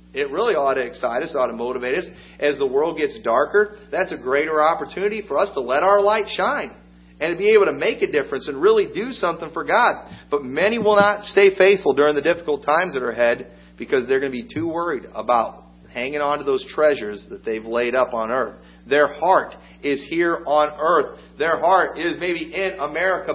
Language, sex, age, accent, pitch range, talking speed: English, male, 40-59, American, 140-200 Hz, 215 wpm